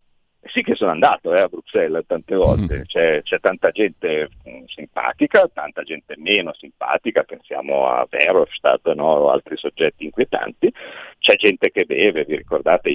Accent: native